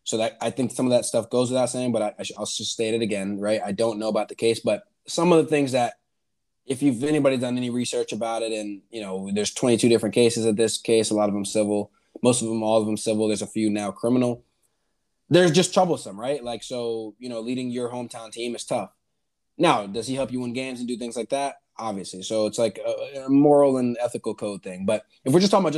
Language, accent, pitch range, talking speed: English, American, 105-140 Hz, 260 wpm